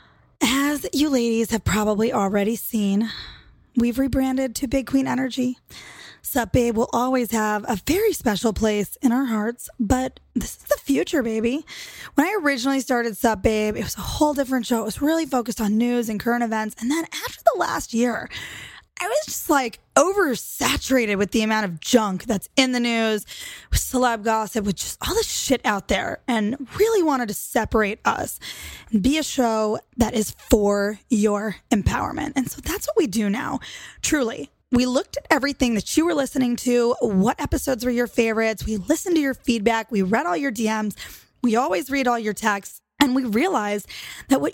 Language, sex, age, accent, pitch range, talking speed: English, female, 20-39, American, 215-260 Hz, 190 wpm